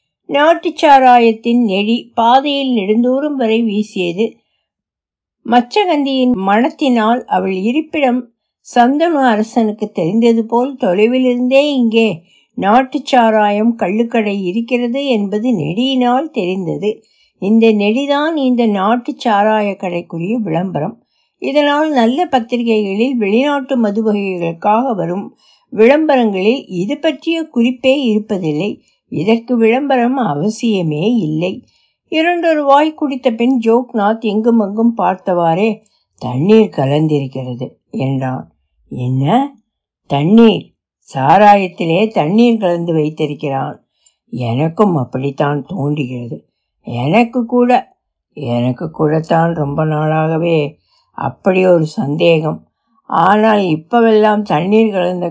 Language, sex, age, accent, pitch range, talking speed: Tamil, female, 60-79, native, 170-245 Hz, 85 wpm